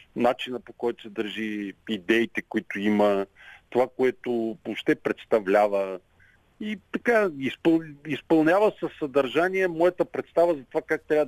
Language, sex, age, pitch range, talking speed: Bulgarian, male, 50-69, 110-150 Hz, 130 wpm